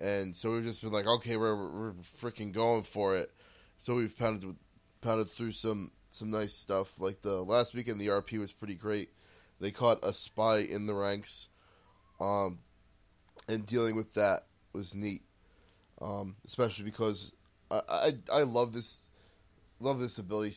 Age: 20-39